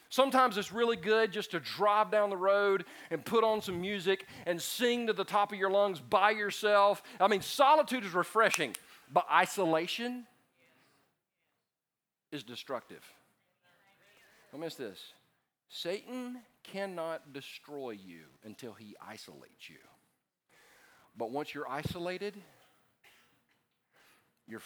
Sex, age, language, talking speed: male, 40-59, English, 125 wpm